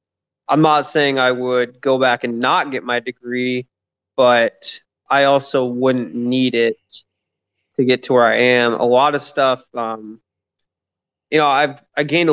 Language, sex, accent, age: English, male, American, 20-39